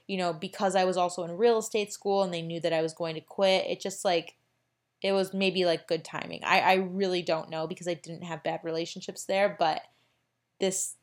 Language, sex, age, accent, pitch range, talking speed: English, female, 20-39, American, 180-220 Hz, 230 wpm